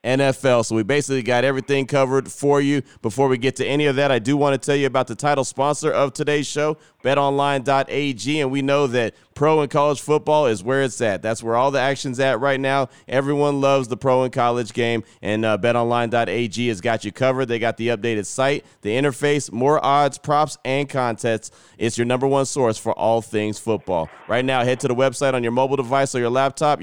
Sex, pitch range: male, 115-135 Hz